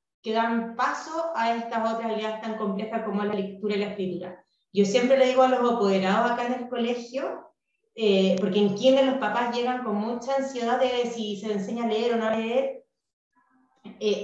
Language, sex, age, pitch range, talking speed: Spanish, female, 20-39, 205-260 Hz, 200 wpm